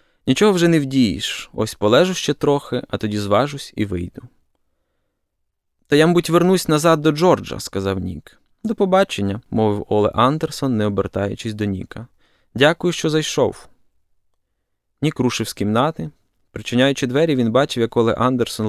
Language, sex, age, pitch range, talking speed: Ukrainian, male, 20-39, 105-145 Hz, 150 wpm